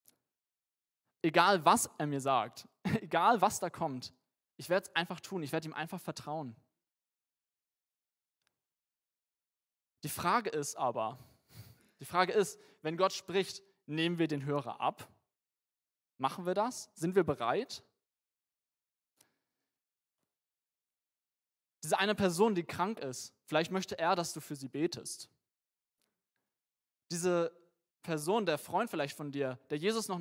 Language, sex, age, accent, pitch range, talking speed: German, male, 20-39, German, 140-185 Hz, 125 wpm